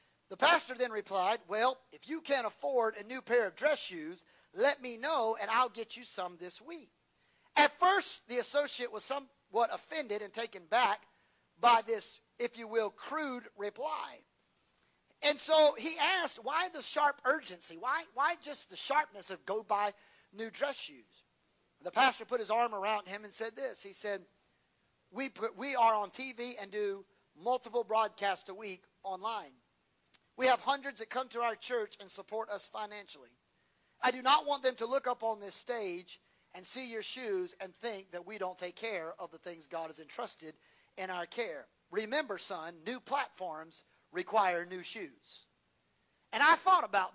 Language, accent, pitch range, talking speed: English, American, 195-270 Hz, 180 wpm